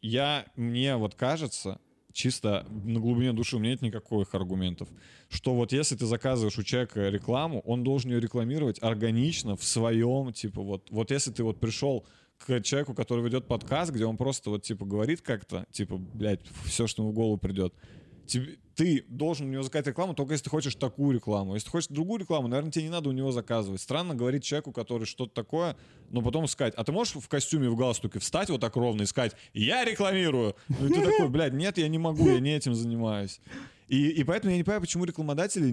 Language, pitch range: Russian, 115-150 Hz